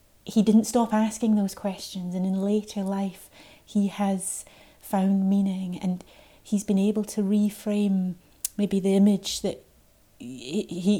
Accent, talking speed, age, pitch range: British, 135 wpm, 30-49, 185-210 Hz